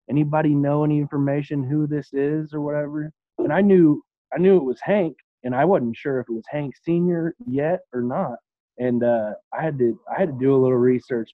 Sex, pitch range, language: male, 115-130 Hz, English